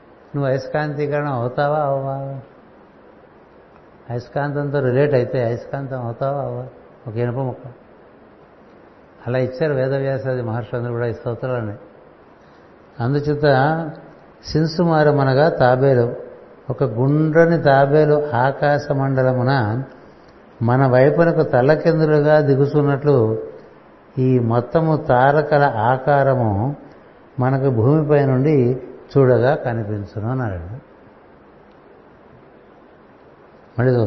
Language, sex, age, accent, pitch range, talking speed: Telugu, male, 60-79, native, 125-145 Hz, 80 wpm